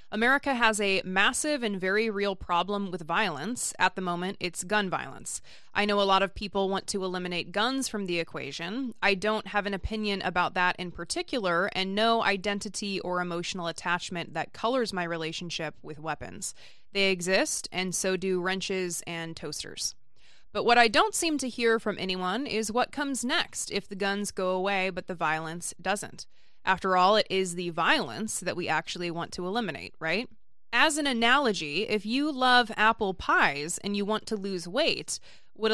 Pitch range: 180-220 Hz